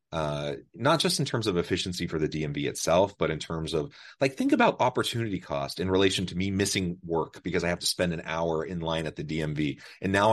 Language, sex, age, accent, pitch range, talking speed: English, male, 30-49, American, 80-95 Hz, 230 wpm